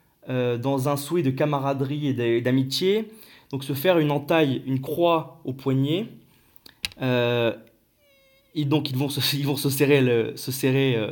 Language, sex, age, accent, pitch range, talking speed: French, male, 20-39, French, 125-155 Hz, 155 wpm